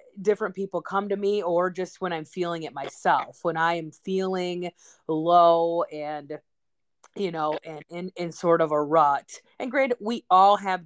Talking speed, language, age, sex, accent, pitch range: 175 wpm, English, 30-49, female, American, 155-205 Hz